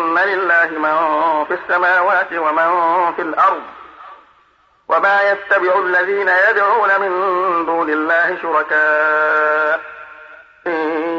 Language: Arabic